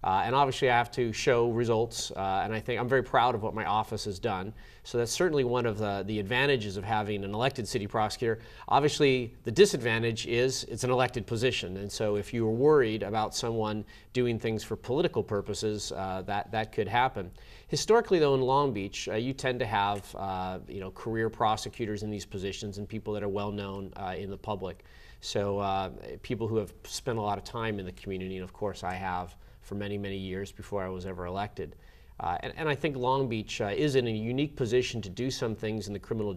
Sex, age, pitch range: male, 30-49, 100-120 Hz